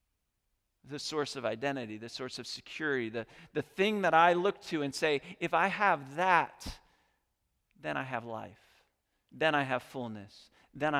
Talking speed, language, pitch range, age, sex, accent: 165 wpm, English, 115-165 Hz, 40-59, male, American